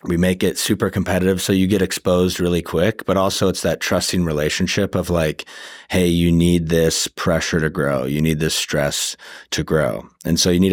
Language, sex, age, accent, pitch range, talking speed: English, male, 30-49, American, 80-90 Hz, 200 wpm